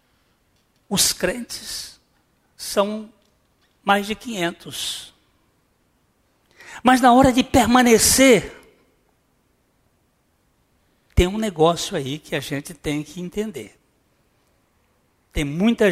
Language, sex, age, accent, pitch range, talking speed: Portuguese, male, 60-79, Brazilian, 155-205 Hz, 85 wpm